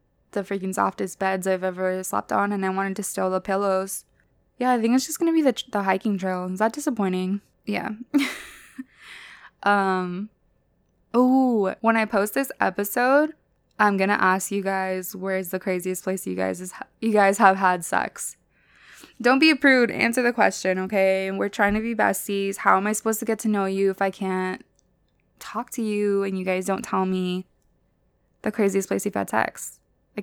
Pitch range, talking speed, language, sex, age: 190-230 Hz, 190 wpm, English, female, 20-39